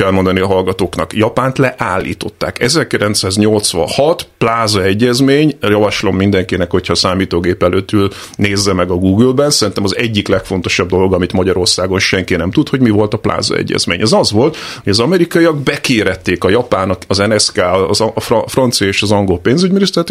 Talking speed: 155 wpm